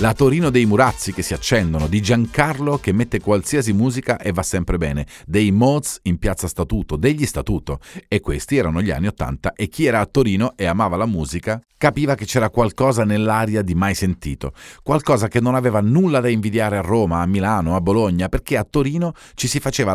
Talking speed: 200 wpm